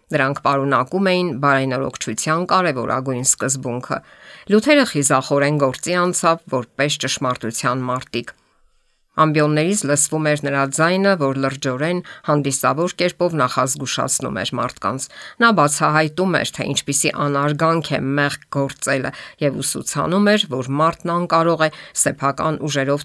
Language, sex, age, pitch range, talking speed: English, female, 50-69, 135-165 Hz, 75 wpm